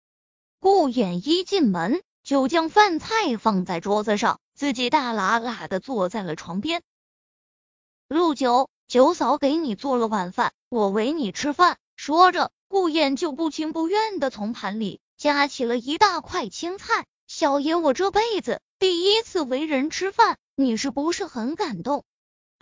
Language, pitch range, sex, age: Chinese, 235-340 Hz, female, 20-39